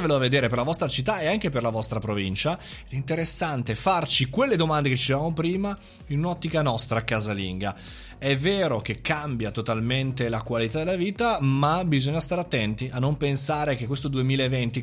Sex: male